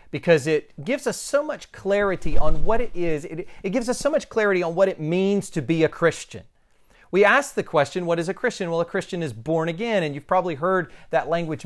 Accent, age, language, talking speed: American, 40-59, English, 235 wpm